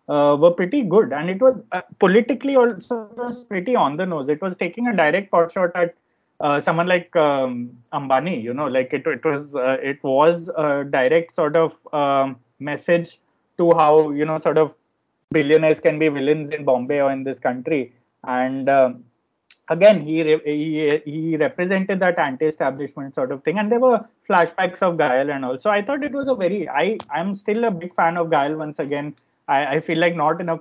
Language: English